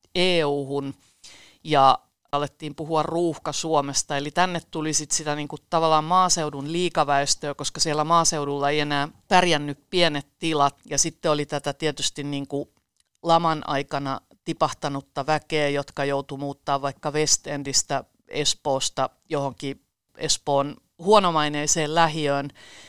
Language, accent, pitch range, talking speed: Finnish, native, 140-165 Hz, 115 wpm